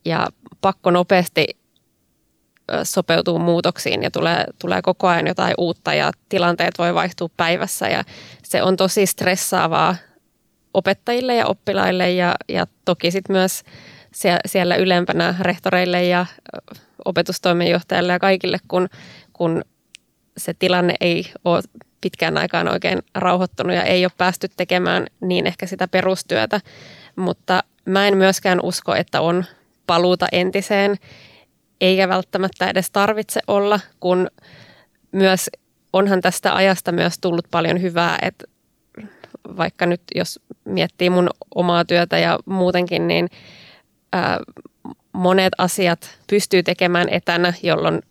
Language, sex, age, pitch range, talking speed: Finnish, female, 20-39, 175-190 Hz, 120 wpm